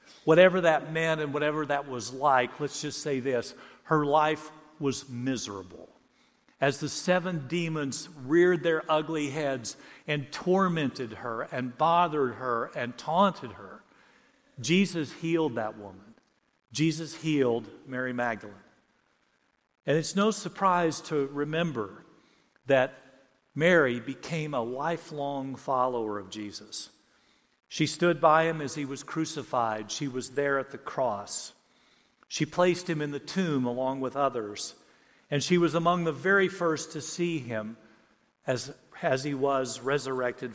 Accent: American